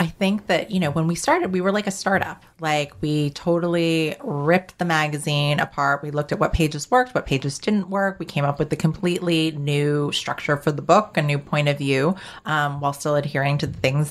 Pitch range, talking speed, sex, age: 145-170 Hz, 225 wpm, female, 30-49